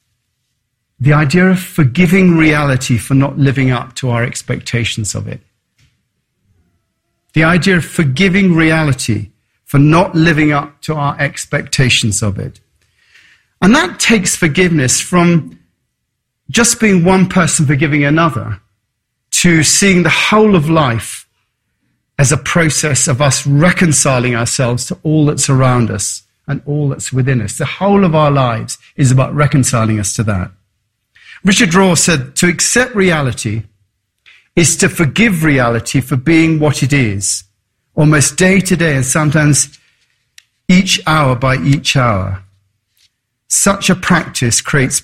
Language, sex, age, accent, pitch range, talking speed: English, male, 40-59, British, 120-165 Hz, 135 wpm